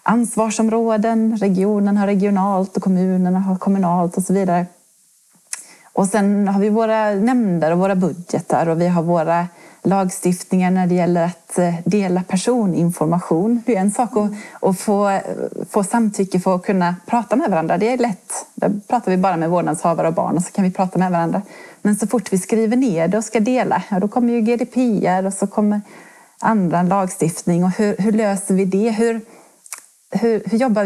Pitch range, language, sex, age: 180-220 Hz, Swedish, female, 30-49